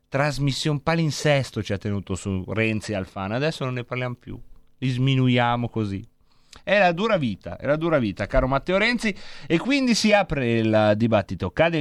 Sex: male